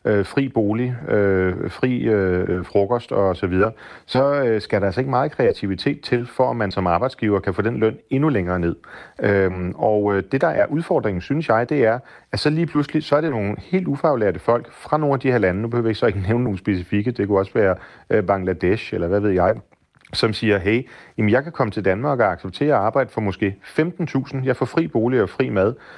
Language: Danish